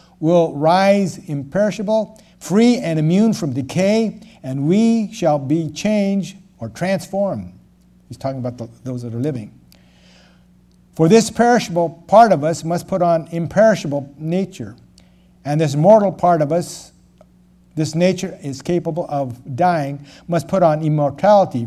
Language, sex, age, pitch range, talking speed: English, male, 60-79, 130-180 Hz, 140 wpm